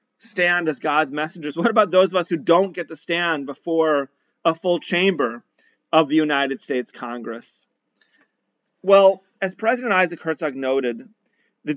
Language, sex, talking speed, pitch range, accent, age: English, male, 155 wpm, 135-190 Hz, American, 40-59